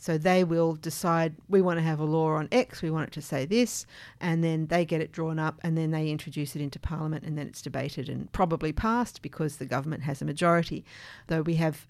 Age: 50-69